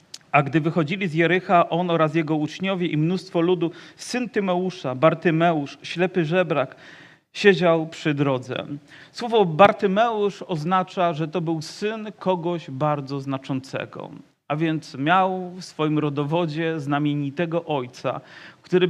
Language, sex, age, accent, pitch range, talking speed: Polish, male, 40-59, native, 150-180 Hz, 125 wpm